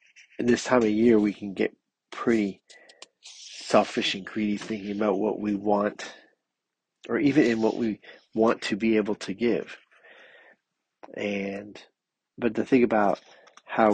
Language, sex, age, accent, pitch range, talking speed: English, male, 30-49, American, 100-110 Hz, 145 wpm